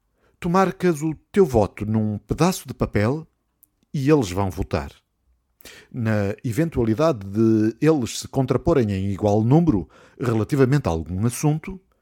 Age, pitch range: 50-69, 110-165 Hz